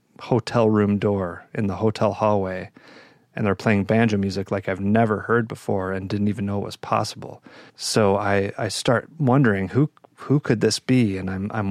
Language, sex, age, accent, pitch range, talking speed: English, male, 30-49, American, 100-120 Hz, 190 wpm